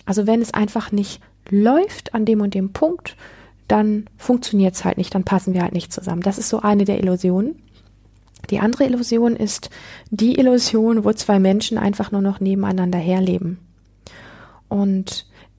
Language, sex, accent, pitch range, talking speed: German, female, German, 175-220 Hz, 165 wpm